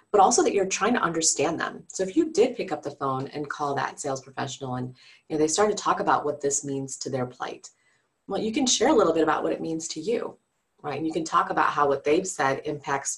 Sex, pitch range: female, 140-170 Hz